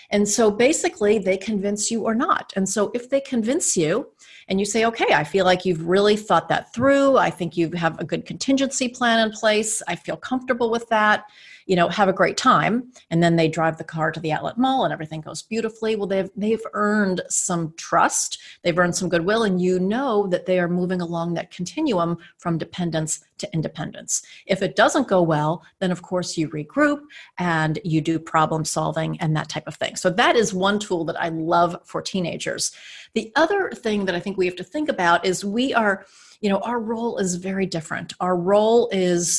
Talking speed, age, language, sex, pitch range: 210 wpm, 40-59, English, female, 175-225 Hz